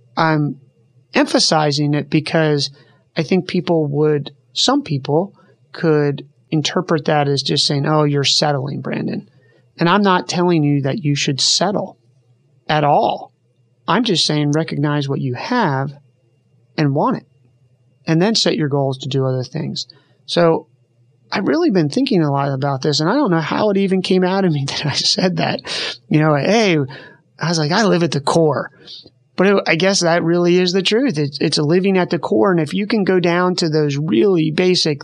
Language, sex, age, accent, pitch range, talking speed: English, male, 30-49, American, 135-175 Hz, 190 wpm